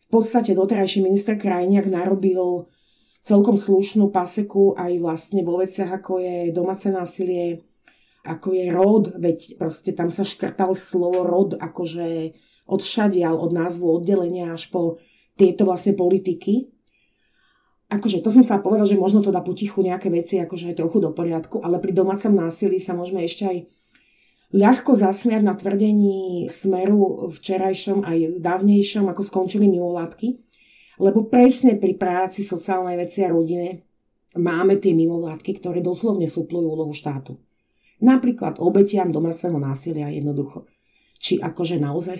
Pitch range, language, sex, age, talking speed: 170-195 Hz, Slovak, female, 30-49, 140 wpm